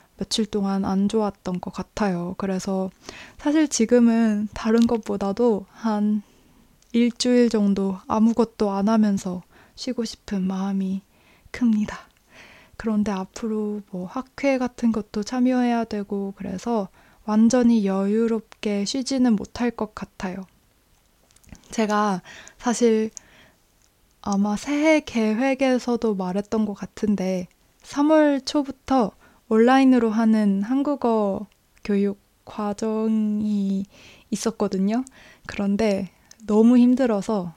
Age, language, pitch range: 20-39, Korean, 200-235 Hz